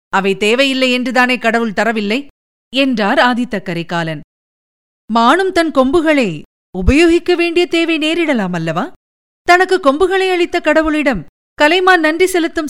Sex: female